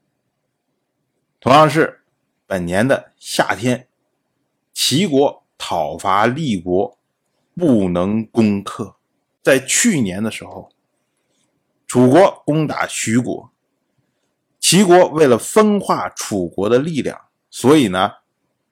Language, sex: Chinese, male